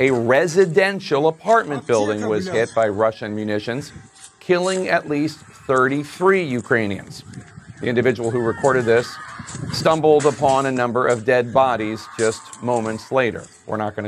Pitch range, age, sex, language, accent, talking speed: 115-145 Hz, 40-59, male, English, American, 135 wpm